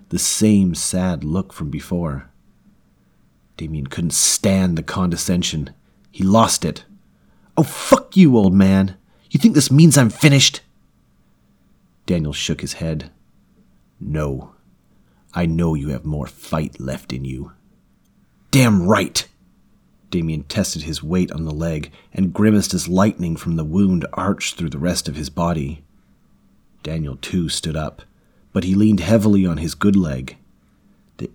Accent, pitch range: American, 80-105 Hz